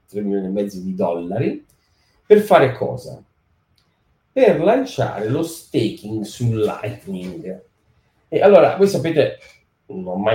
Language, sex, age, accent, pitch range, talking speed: Italian, male, 40-59, native, 100-135 Hz, 130 wpm